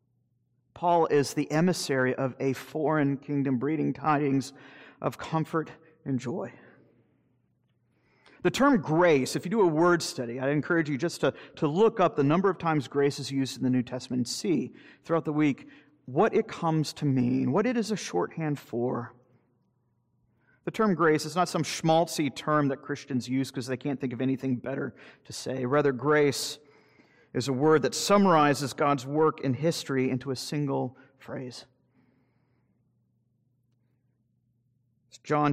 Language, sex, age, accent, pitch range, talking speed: English, male, 40-59, American, 130-155 Hz, 160 wpm